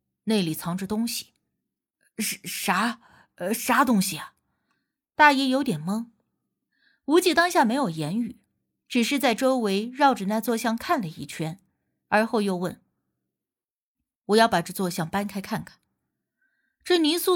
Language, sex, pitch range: Chinese, female, 190-260 Hz